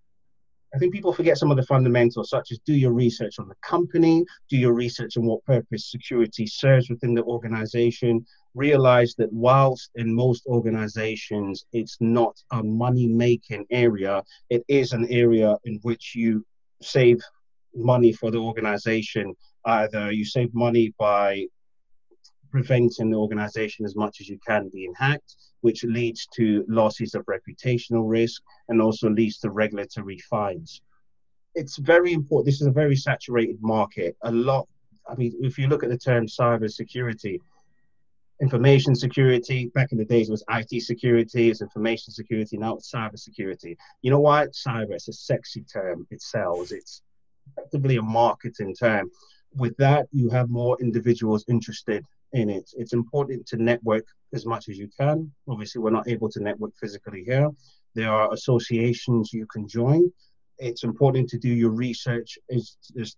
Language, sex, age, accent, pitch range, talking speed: English, male, 30-49, British, 110-130 Hz, 160 wpm